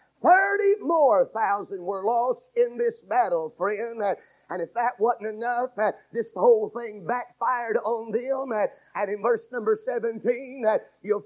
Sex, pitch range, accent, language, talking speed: male, 220-290 Hz, American, English, 140 wpm